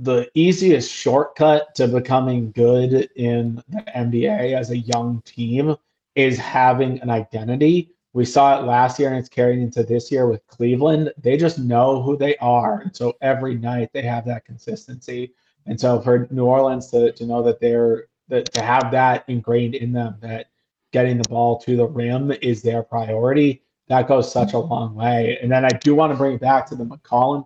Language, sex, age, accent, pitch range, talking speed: English, male, 30-49, American, 120-140 Hz, 195 wpm